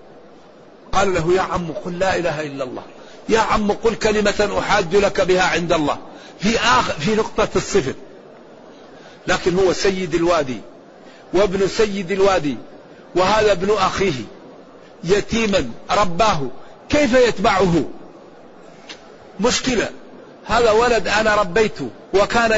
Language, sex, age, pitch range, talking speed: Arabic, male, 50-69, 175-215 Hz, 115 wpm